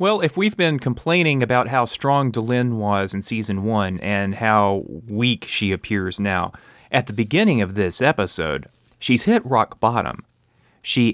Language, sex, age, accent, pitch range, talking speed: English, male, 30-49, American, 100-120 Hz, 160 wpm